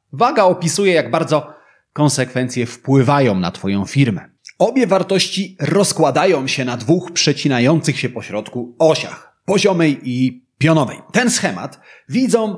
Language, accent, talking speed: Polish, native, 120 wpm